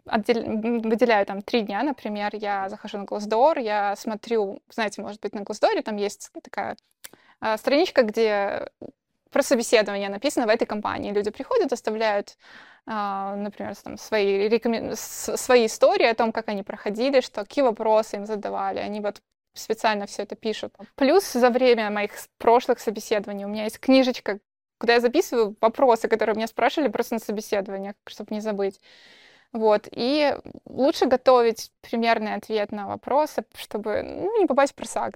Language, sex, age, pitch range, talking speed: Russian, female, 20-39, 205-255 Hz, 155 wpm